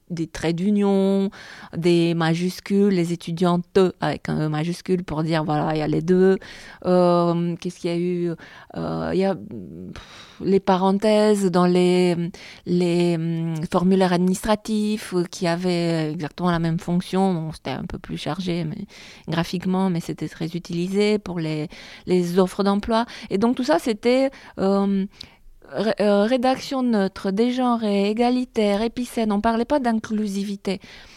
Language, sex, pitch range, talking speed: French, female, 175-225 Hz, 150 wpm